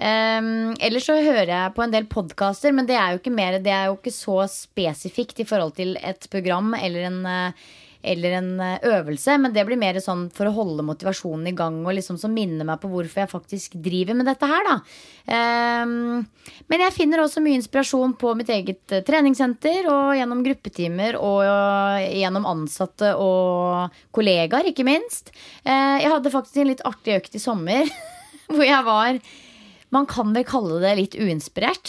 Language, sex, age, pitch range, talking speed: English, female, 20-39, 185-245 Hz, 175 wpm